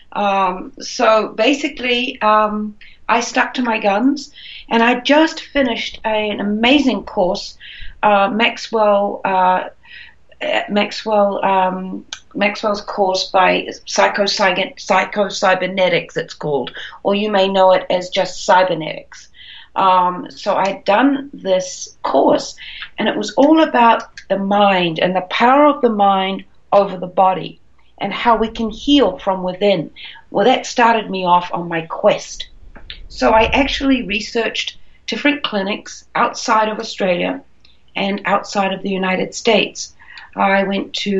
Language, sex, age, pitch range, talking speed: English, female, 40-59, 190-230 Hz, 135 wpm